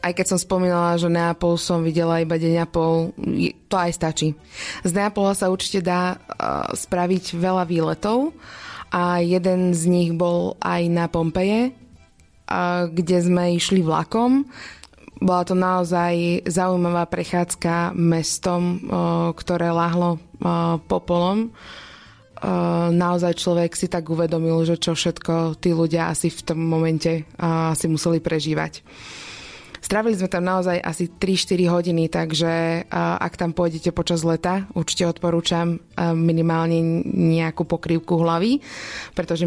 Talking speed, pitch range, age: 120 wpm, 165-175 Hz, 20-39